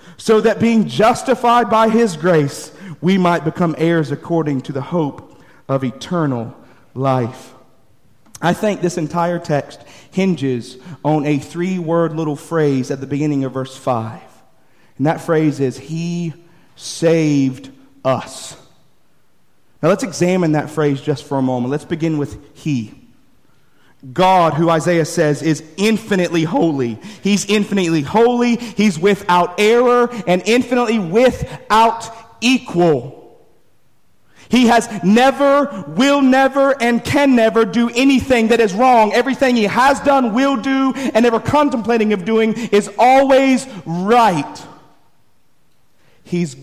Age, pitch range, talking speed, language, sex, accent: 40-59, 150-225 Hz, 130 wpm, English, male, American